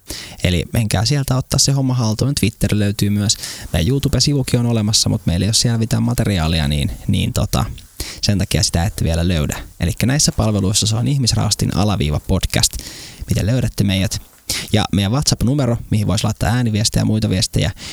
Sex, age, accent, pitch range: male, 20-39, native, 95-120 Hz